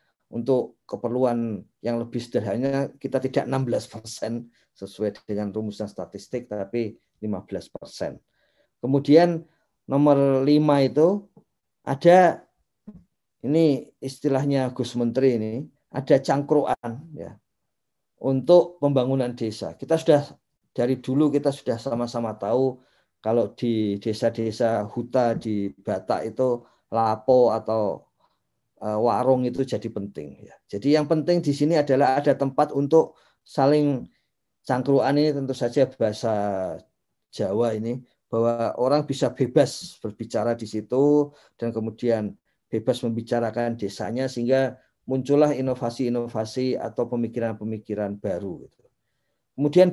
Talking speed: 105 wpm